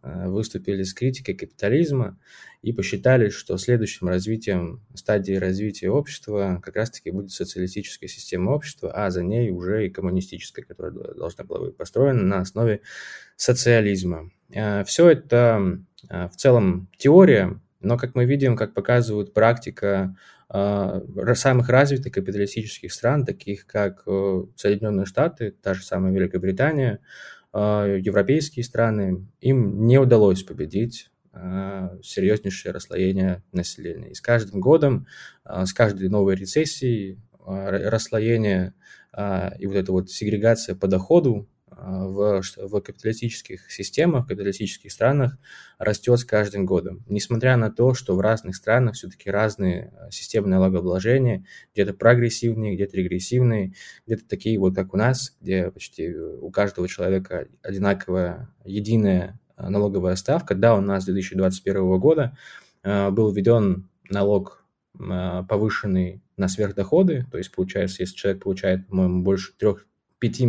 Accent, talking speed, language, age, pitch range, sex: native, 120 wpm, Russian, 20-39, 95-115 Hz, male